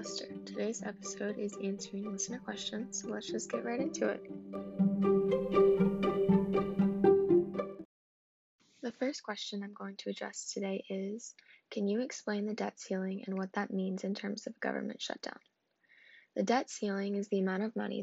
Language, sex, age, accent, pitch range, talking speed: English, female, 10-29, American, 195-220 Hz, 150 wpm